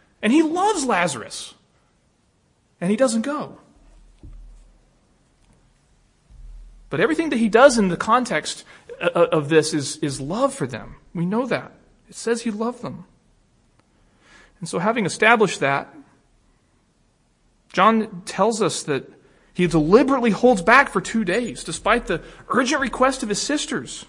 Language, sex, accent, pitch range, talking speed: English, male, American, 185-245 Hz, 135 wpm